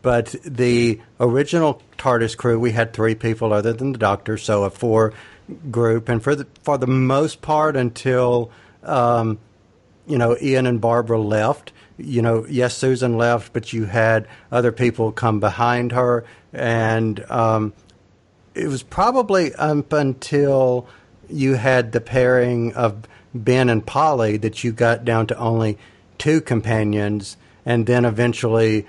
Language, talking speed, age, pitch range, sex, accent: English, 145 wpm, 50-69, 110-125 Hz, male, American